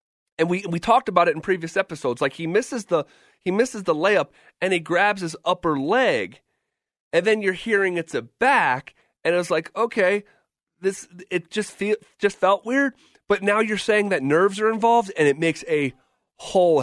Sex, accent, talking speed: male, American, 195 wpm